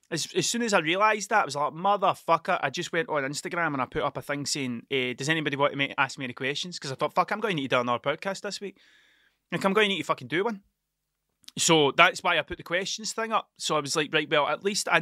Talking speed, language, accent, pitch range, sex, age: 295 wpm, English, British, 145-205 Hz, male, 20-39